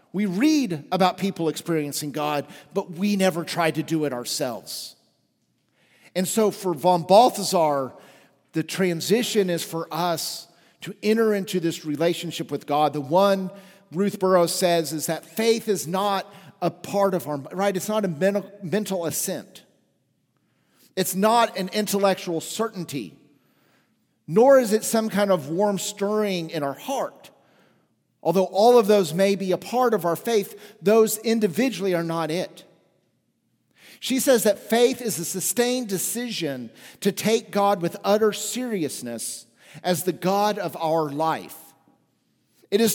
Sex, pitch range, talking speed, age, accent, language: male, 165-205 Hz, 150 wpm, 50-69, American, English